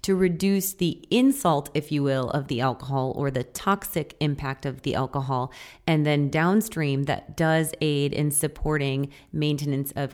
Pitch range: 145-175 Hz